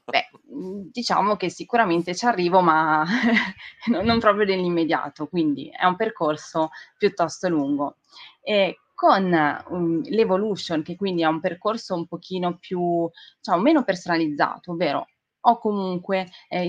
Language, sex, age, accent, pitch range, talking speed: Italian, female, 20-39, native, 155-190 Hz, 120 wpm